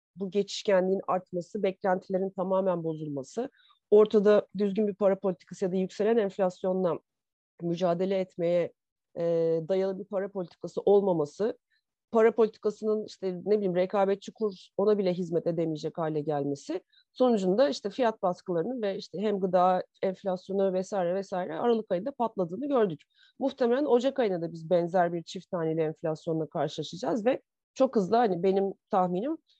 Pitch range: 180-220 Hz